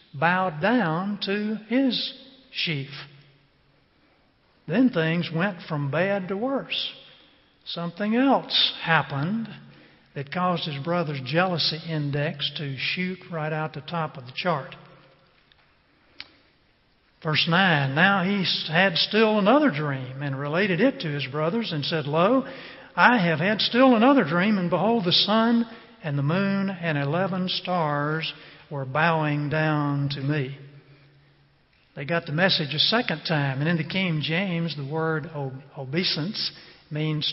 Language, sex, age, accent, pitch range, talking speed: English, male, 50-69, American, 150-200 Hz, 135 wpm